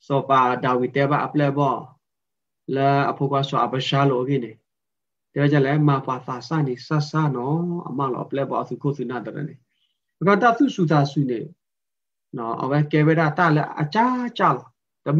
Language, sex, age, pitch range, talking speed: English, male, 30-49, 140-185 Hz, 150 wpm